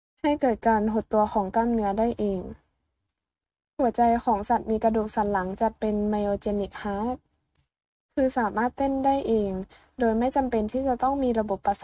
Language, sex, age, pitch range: Thai, female, 20-39, 205-250 Hz